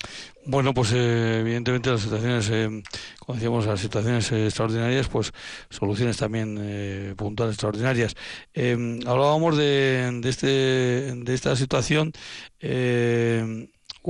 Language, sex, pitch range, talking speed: Spanish, male, 115-140 Hz, 110 wpm